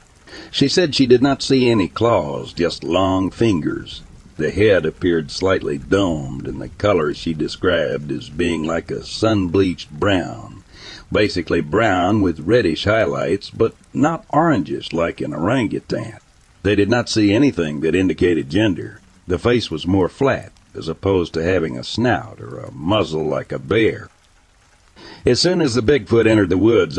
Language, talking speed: English, 160 wpm